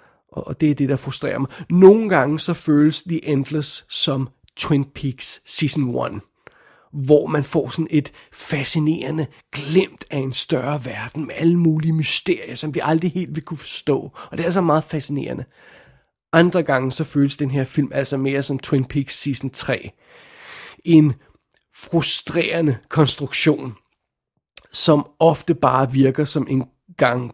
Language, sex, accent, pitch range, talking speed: Danish, male, native, 135-160 Hz, 155 wpm